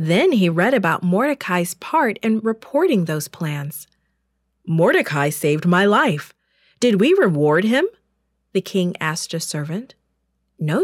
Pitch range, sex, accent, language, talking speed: 150-205 Hz, female, American, English, 135 wpm